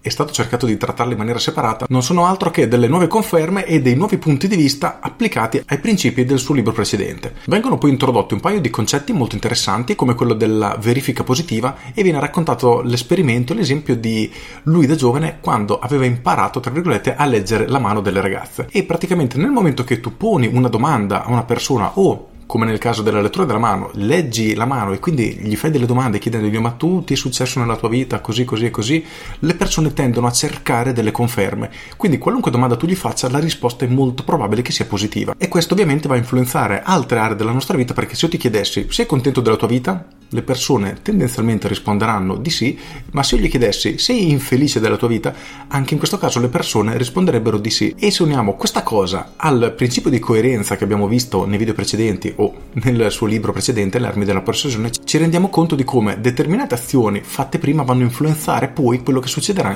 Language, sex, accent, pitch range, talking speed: Italian, male, native, 110-150 Hz, 210 wpm